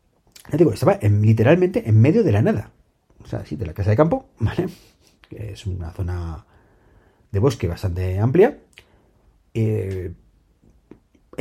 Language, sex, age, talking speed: Spanish, male, 40-59, 155 wpm